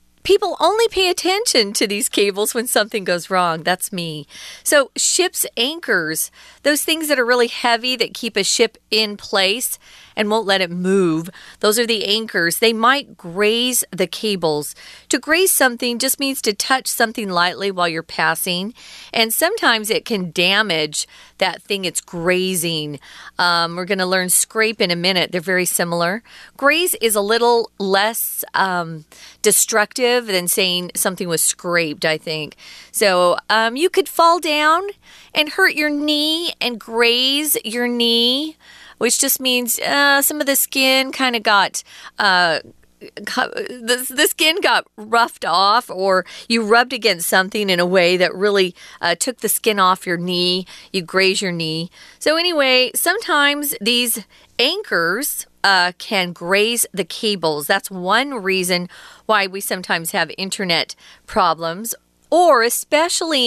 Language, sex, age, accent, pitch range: Chinese, female, 40-59, American, 185-265 Hz